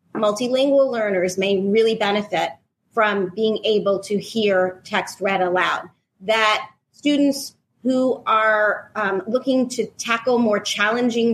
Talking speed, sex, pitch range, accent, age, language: 120 wpm, female, 205-270 Hz, American, 30-49, English